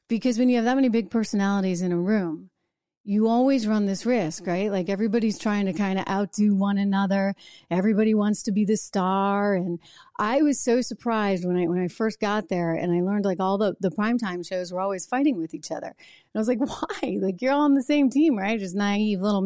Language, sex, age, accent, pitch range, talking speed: English, female, 30-49, American, 185-240 Hz, 230 wpm